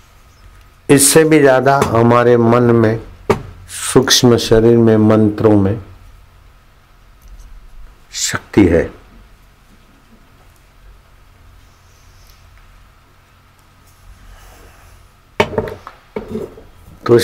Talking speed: 50 wpm